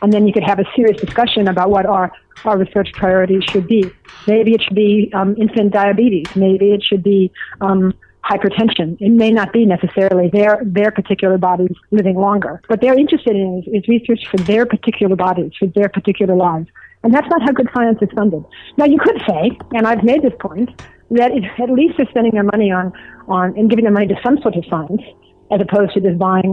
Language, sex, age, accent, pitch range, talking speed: English, female, 40-59, American, 190-225 Hz, 215 wpm